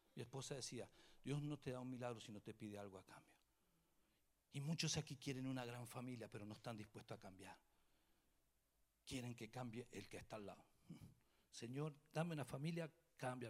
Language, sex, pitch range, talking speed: English, male, 110-165 Hz, 180 wpm